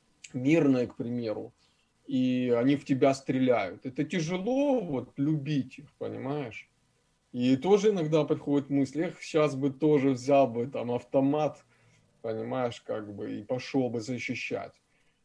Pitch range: 120-150 Hz